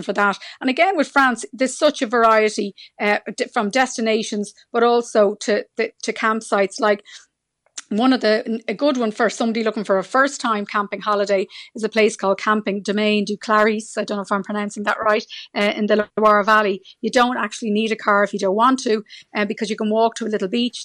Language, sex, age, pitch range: English, female, 40-59, 205-230 Hz